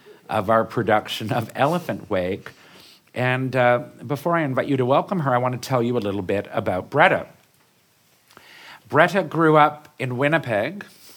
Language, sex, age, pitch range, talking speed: English, male, 50-69, 100-130 Hz, 160 wpm